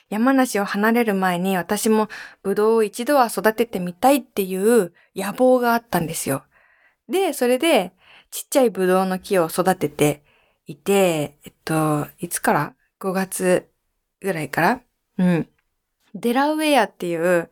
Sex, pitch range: female, 190-275 Hz